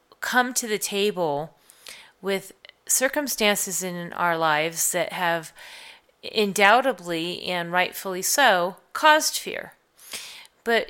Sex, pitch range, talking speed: female, 170-210 Hz, 100 wpm